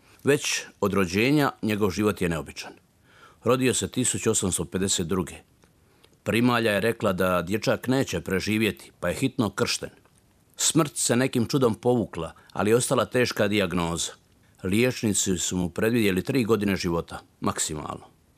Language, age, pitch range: Croatian, 50-69, 90-115 Hz